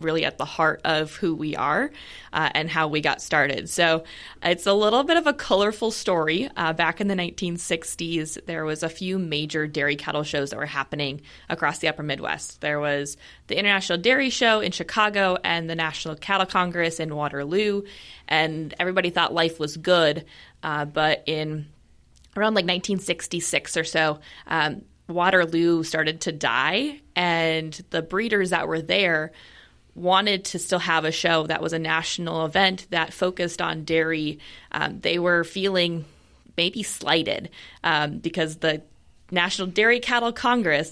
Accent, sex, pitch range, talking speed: American, female, 155-185 Hz, 165 wpm